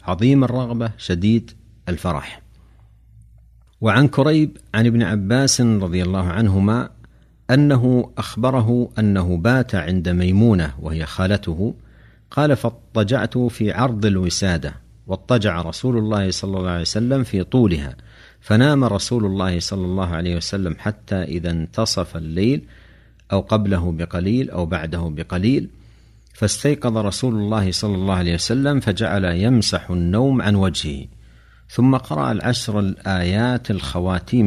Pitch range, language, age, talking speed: 90-120 Hz, Arabic, 50-69, 120 wpm